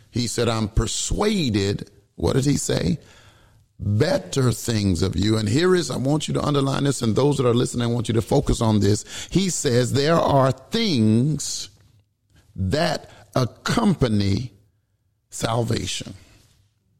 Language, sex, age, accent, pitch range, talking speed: English, male, 50-69, American, 105-130 Hz, 145 wpm